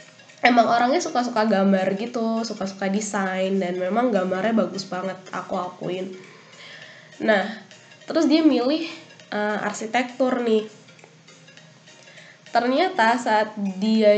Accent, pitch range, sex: native, 195-245 Hz, female